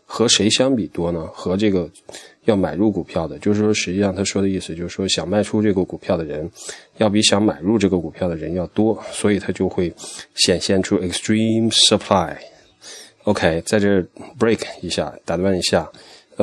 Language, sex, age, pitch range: Chinese, male, 20-39, 95-110 Hz